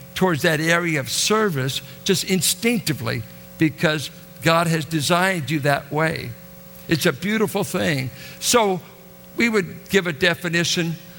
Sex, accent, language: male, American, English